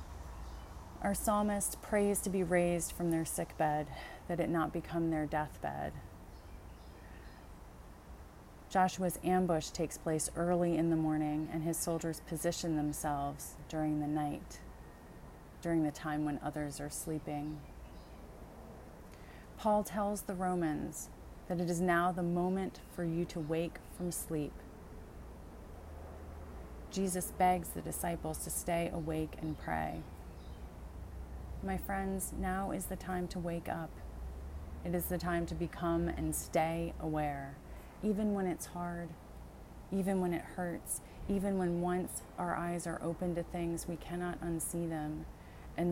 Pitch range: 150-175 Hz